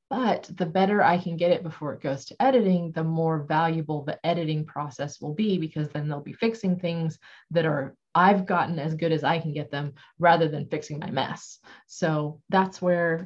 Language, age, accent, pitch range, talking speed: English, 30-49, American, 155-180 Hz, 205 wpm